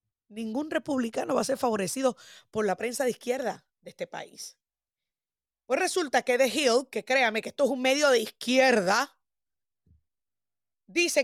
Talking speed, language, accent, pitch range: 155 wpm, Spanish, American, 235-315 Hz